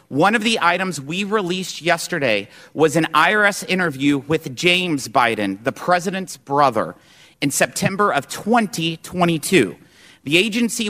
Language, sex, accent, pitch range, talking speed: English, male, American, 155-195 Hz, 125 wpm